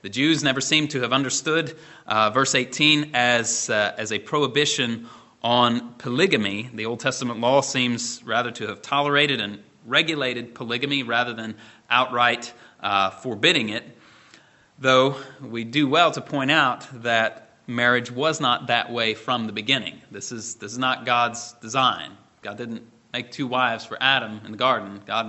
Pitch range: 115-145 Hz